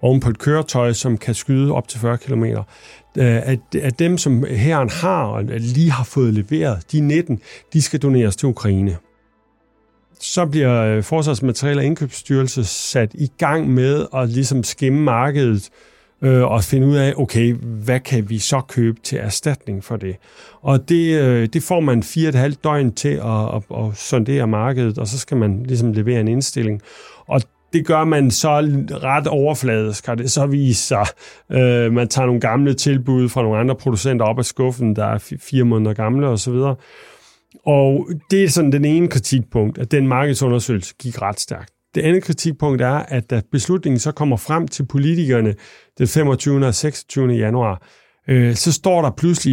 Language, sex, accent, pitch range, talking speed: Danish, male, native, 115-145 Hz, 175 wpm